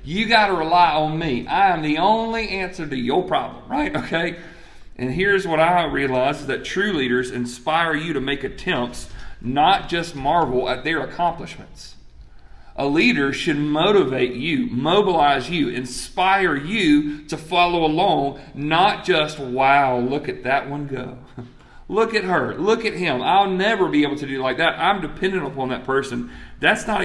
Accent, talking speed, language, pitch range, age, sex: American, 170 wpm, English, 125-170 Hz, 40-59, male